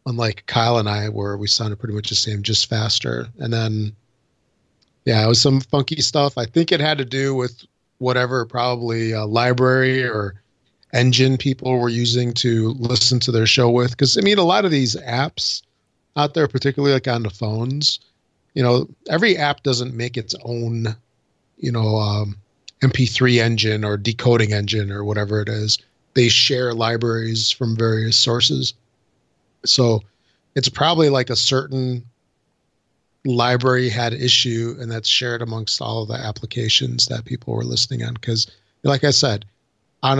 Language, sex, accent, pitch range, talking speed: English, male, American, 110-130 Hz, 165 wpm